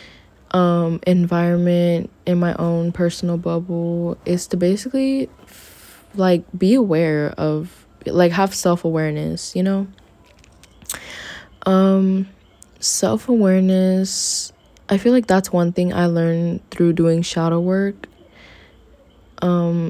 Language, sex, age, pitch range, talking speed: English, female, 20-39, 165-190 Hz, 105 wpm